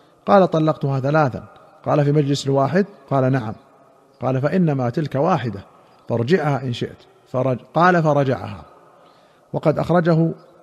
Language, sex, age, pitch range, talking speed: Arabic, male, 50-69, 140-165 Hz, 120 wpm